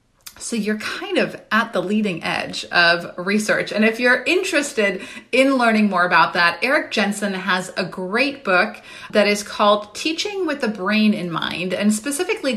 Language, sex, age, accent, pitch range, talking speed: English, female, 30-49, American, 195-265 Hz, 170 wpm